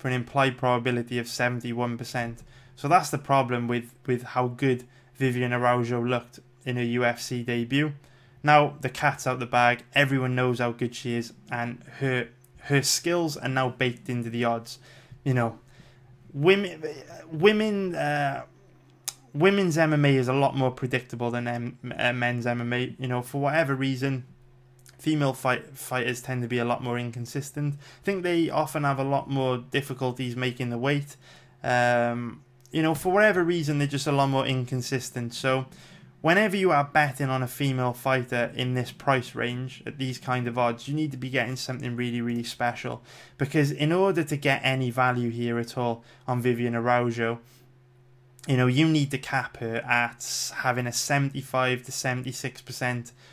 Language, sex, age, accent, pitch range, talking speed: English, male, 20-39, British, 120-140 Hz, 170 wpm